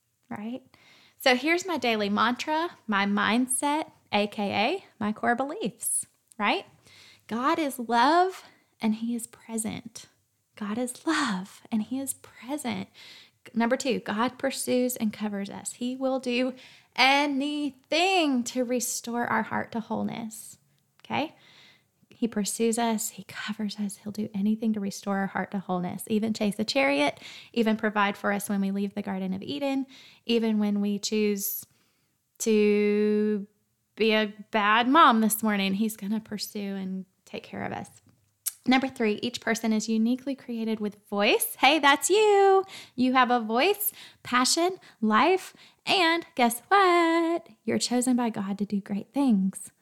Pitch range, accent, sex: 210-255 Hz, American, female